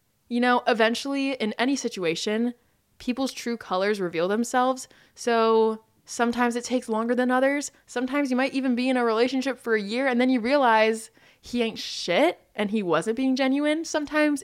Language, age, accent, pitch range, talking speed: English, 20-39, American, 185-255 Hz, 175 wpm